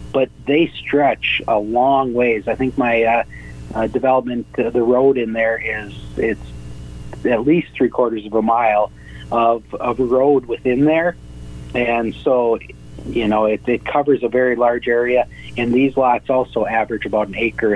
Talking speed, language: 170 wpm, English